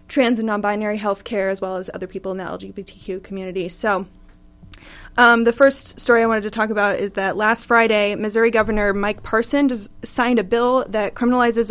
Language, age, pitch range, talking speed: English, 20-39, 195-225 Hz, 190 wpm